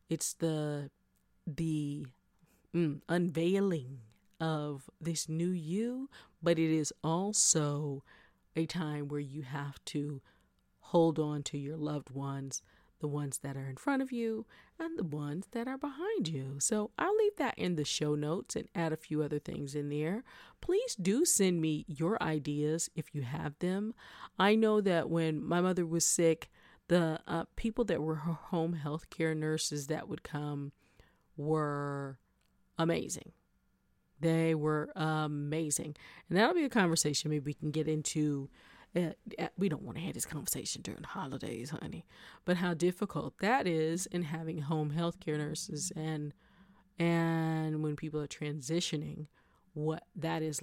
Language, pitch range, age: English, 150-175 Hz, 40-59